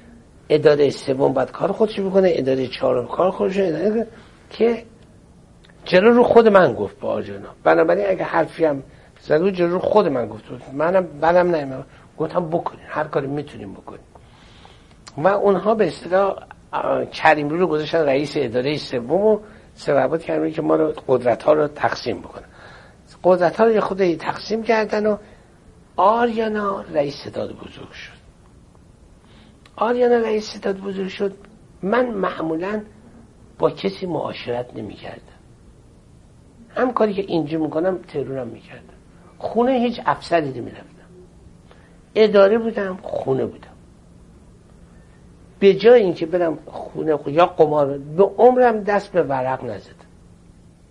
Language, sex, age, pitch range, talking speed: Persian, male, 60-79, 155-210 Hz, 130 wpm